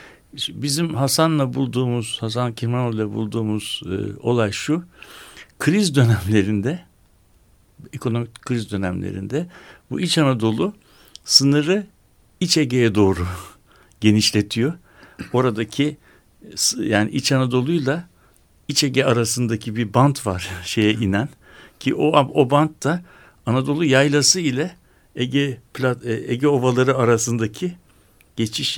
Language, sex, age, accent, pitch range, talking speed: Turkish, male, 60-79, native, 105-140 Hz, 100 wpm